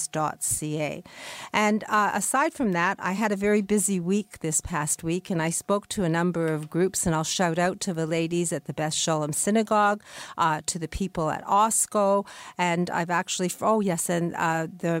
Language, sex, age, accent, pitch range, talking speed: English, female, 50-69, American, 165-205 Hz, 195 wpm